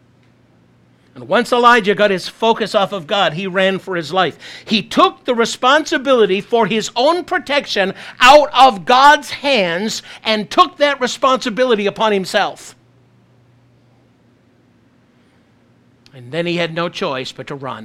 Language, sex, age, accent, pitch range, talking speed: English, male, 60-79, American, 145-205 Hz, 140 wpm